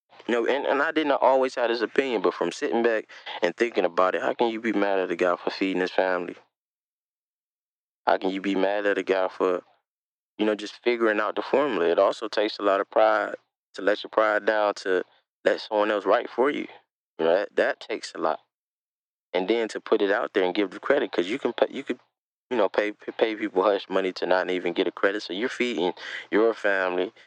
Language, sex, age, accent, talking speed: English, male, 20-39, American, 235 wpm